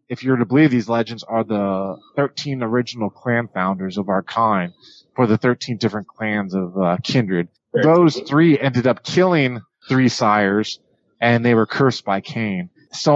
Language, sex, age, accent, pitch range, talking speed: English, male, 30-49, American, 105-130 Hz, 175 wpm